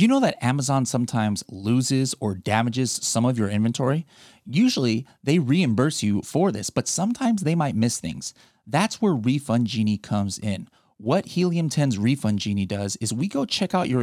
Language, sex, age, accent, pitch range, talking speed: English, male, 30-49, American, 105-160 Hz, 185 wpm